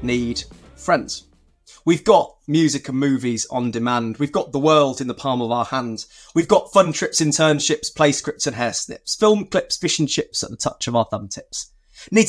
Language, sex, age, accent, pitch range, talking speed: English, male, 20-39, British, 125-160 Hz, 205 wpm